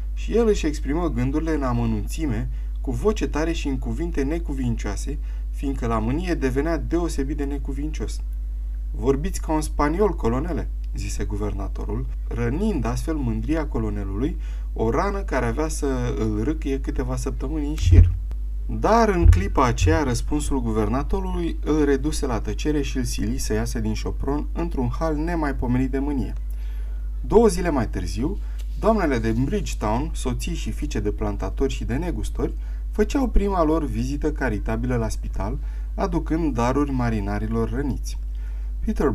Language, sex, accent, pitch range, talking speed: Romanian, male, native, 105-150 Hz, 140 wpm